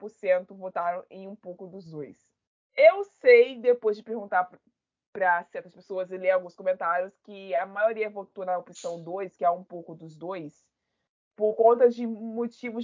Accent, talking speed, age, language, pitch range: Brazilian, 165 wpm, 20-39, Portuguese, 180-235 Hz